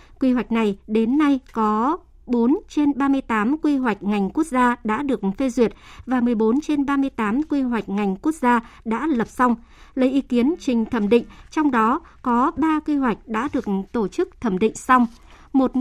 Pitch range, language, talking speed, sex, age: 220-275 Hz, Vietnamese, 190 wpm, male, 60-79